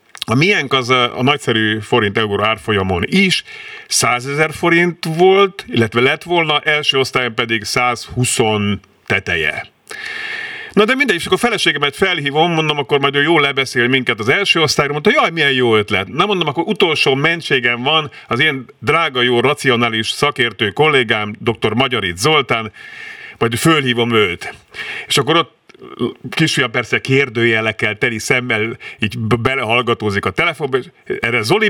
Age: 50-69